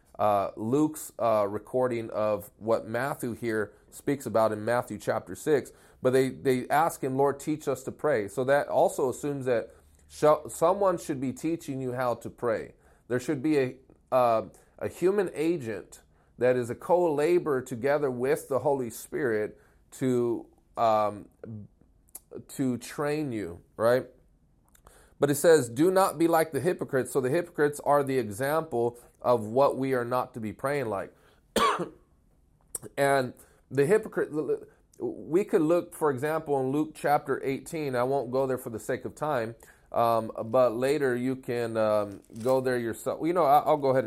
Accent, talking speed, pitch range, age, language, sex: American, 165 wpm, 120-150 Hz, 30-49, English, male